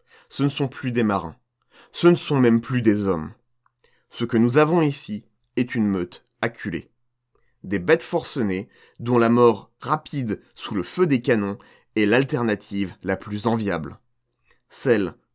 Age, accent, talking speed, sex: 30-49, French, 155 wpm, male